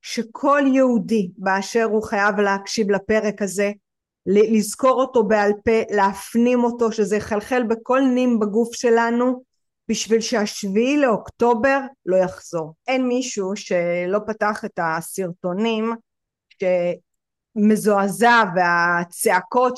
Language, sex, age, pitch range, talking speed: Hebrew, female, 30-49, 200-255 Hz, 100 wpm